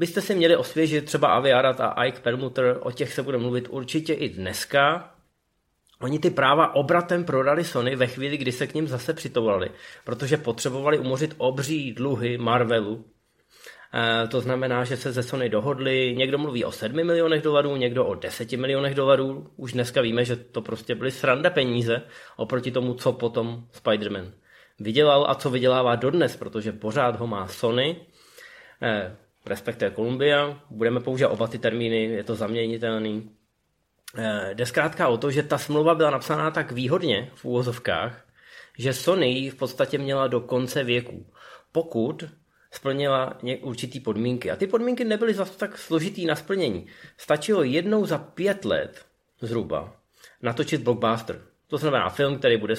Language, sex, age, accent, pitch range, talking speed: Czech, male, 20-39, native, 120-150 Hz, 160 wpm